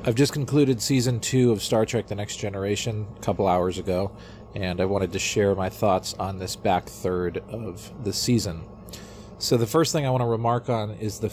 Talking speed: 210 wpm